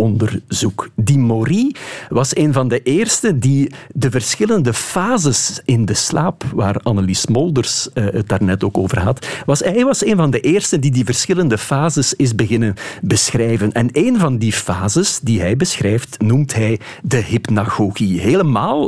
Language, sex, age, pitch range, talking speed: Dutch, male, 50-69, 110-160 Hz, 155 wpm